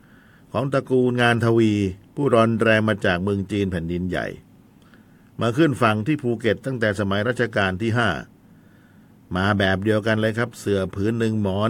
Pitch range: 95-120 Hz